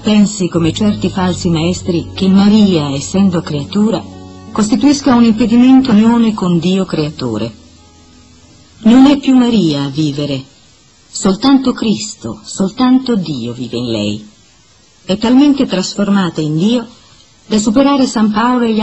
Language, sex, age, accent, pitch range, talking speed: Italian, female, 50-69, native, 145-235 Hz, 130 wpm